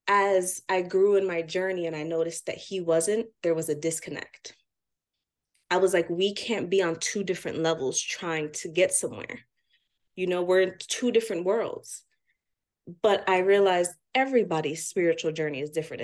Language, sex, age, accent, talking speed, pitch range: English, female, 20-39, American, 170 wpm, 175-270 Hz